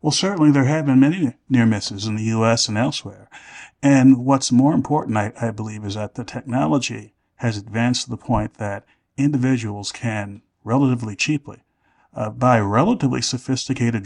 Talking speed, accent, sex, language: 160 wpm, American, male, English